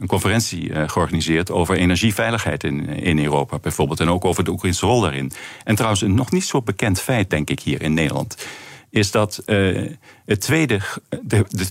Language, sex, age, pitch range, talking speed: Dutch, male, 50-69, 85-105 Hz, 170 wpm